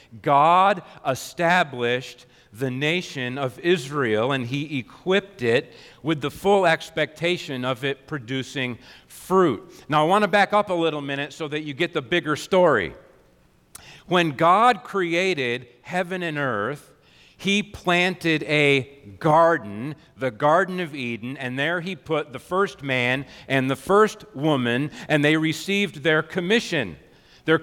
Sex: male